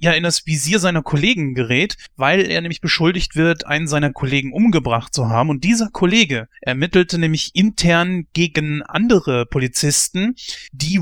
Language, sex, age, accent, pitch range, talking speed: German, male, 30-49, German, 140-175 Hz, 150 wpm